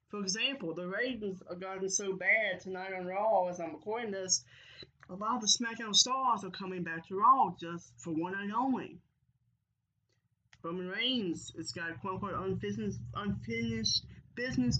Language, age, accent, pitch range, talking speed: English, 20-39, American, 165-205 Hz, 160 wpm